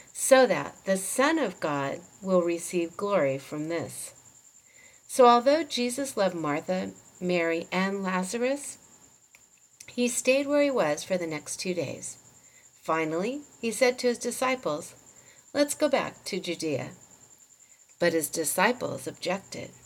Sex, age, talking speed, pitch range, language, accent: female, 50-69, 135 wpm, 170-250 Hz, English, American